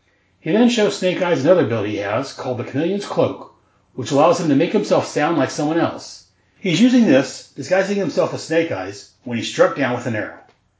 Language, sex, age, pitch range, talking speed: English, male, 30-49, 125-165 Hz, 210 wpm